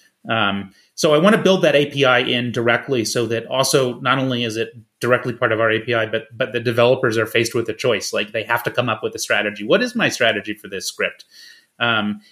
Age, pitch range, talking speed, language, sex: 30-49, 110-135 Hz, 235 wpm, English, male